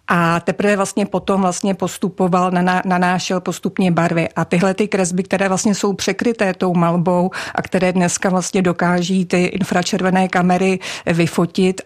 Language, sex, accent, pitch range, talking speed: Czech, female, native, 180-200 Hz, 145 wpm